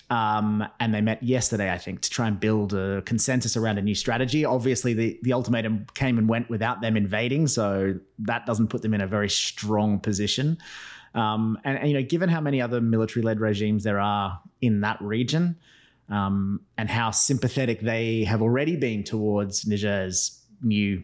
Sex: male